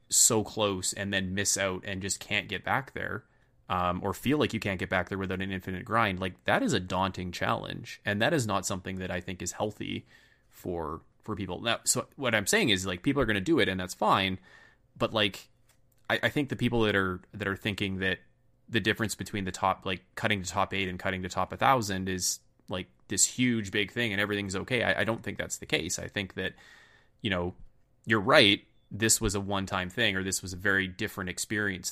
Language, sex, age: English, male, 20-39